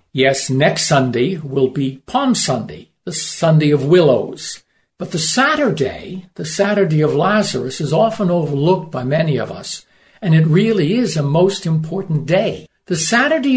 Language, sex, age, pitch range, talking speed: Ukrainian, male, 60-79, 150-195 Hz, 155 wpm